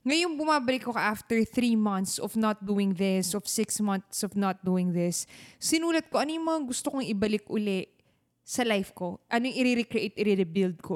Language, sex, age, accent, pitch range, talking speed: Filipino, female, 20-39, native, 190-250 Hz, 180 wpm